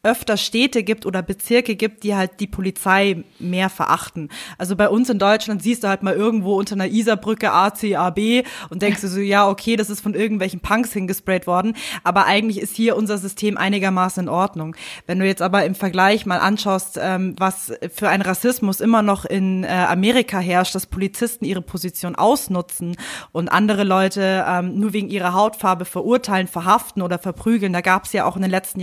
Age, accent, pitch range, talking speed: 20-39, German, 185-215 Hz, 185 wpm